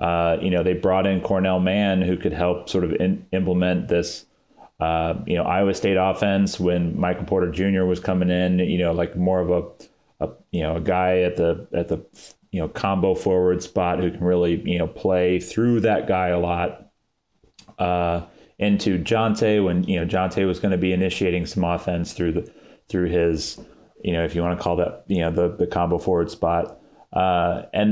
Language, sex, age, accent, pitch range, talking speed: English, male, 30-49, American, 90-95 Hz, 205 wpm